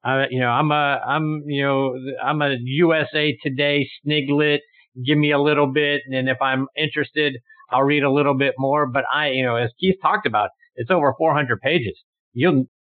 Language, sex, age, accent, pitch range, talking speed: English, male, 50-69, American, 115-145 Hz, 190 wpm